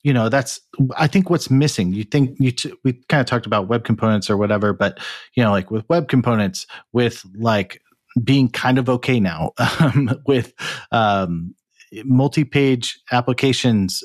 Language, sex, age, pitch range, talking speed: English, male, 40-59, 105-125 Hz, 165 wpm